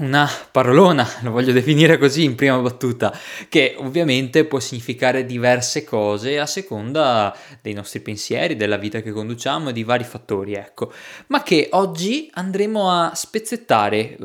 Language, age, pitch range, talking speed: Italian, 20-39, 110-155 Hz, 145 wpm